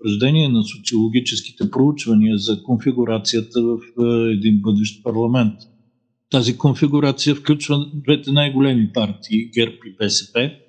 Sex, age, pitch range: male, 50-69, 110-140 Hz